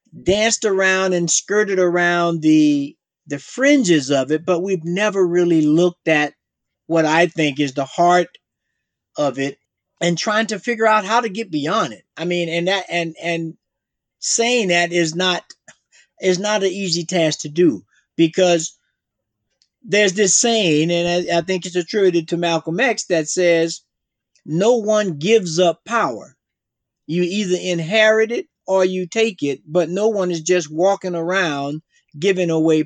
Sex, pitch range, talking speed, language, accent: male, 160-195 Hz, 160 wpm, English, American